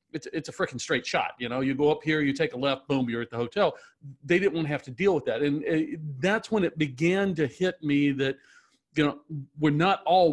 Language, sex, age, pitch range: English, male, 40-59, 140-175 Hz